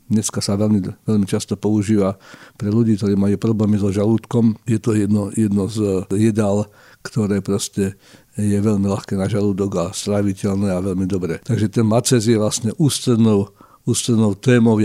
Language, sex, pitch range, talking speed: Slovak, male, 100-115 Hz, 160 wpm